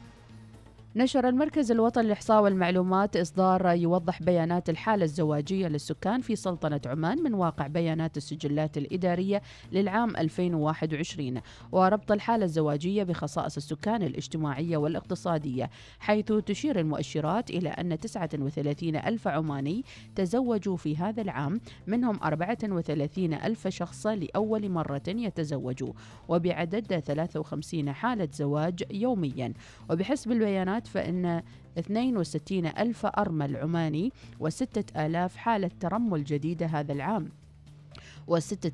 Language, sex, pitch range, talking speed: Arabic, female, 150-195 Hz, 105 wpm